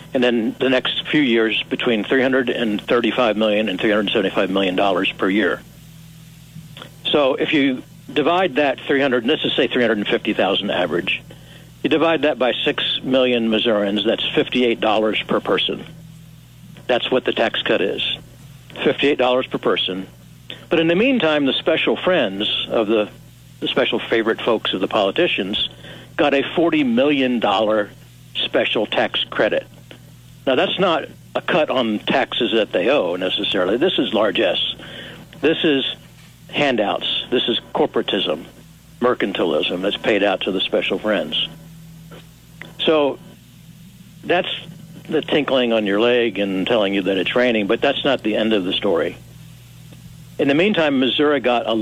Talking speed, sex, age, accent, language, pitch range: 140 wpm, male, 60-79, American, English, 110-160 Hz